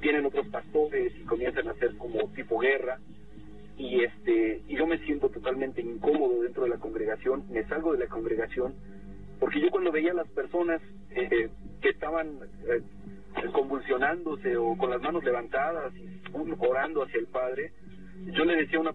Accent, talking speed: Mexican, 170 wpm